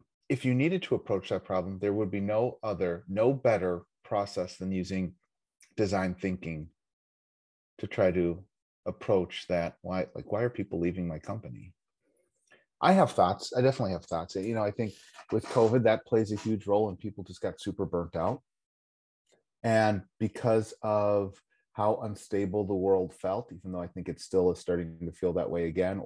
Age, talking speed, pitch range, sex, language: 30-49, 180 wpm, 90-120 Hz, male, English